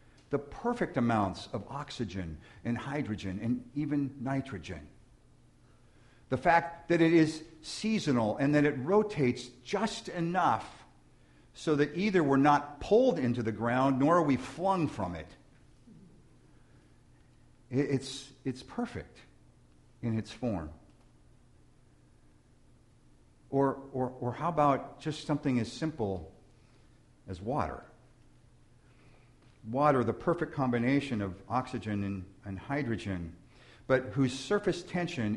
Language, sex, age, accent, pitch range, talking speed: English, male, 50-69, American, 110-140 Hz, 115 wpm